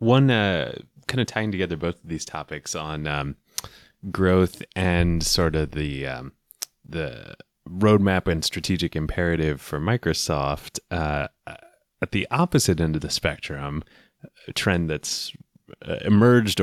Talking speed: 135 wpm